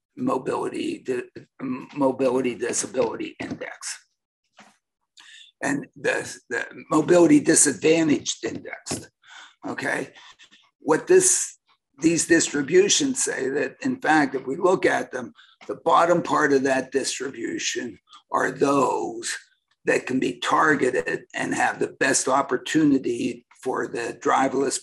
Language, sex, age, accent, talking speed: English, male, 60-79, American, 110 wpm